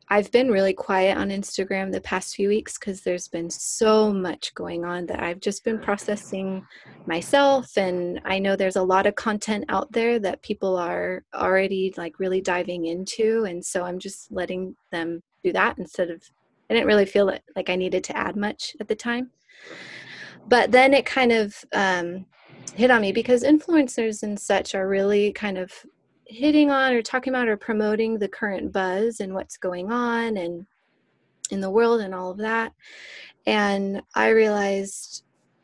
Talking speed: 180 wpm